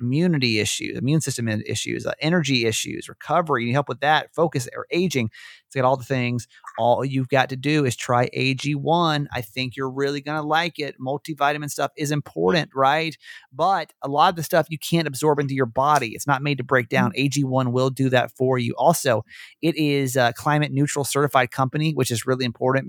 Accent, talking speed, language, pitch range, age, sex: American, 205 wpm, English, 120-155 Hz, 30-49, male